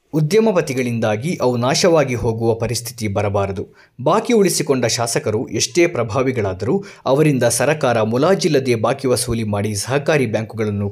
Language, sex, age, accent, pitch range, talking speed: Kannada, male, 20-39, native, 105-145 Hz, 100 wpm